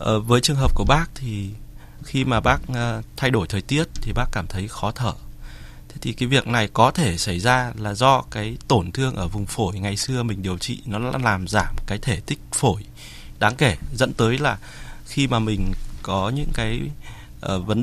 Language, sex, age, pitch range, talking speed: Vietnamese, male, 20-39, 95-125 Hz, 200 wpm